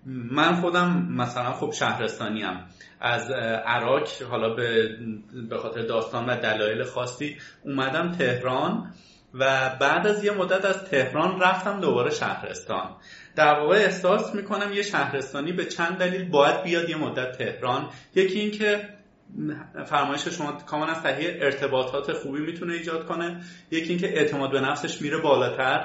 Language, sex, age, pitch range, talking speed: Persian, male, 30-49, 140-205 Hz, 135 wpm